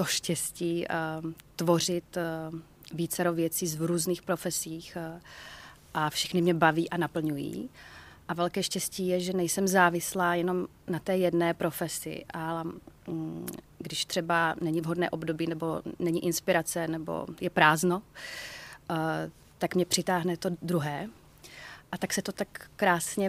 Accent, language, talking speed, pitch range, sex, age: native, Czech, 125 wpm, 160-180 Hz, female, 30-49